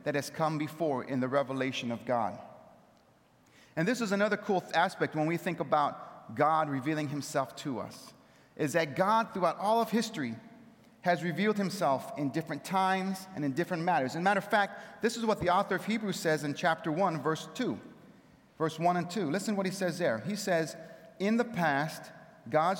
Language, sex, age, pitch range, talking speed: English, male, 30-49, 140-185 Hz, 195 wpm